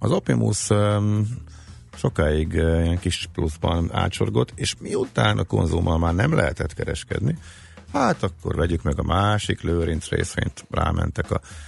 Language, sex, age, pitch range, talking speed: Hungarian, male, 50-69, 80-105 Hz, 140 wpm